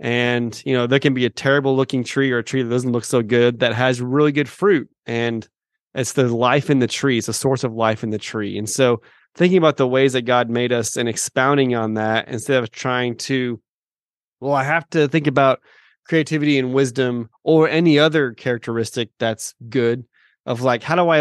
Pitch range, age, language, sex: 115-135 Hz, 30-49, English, male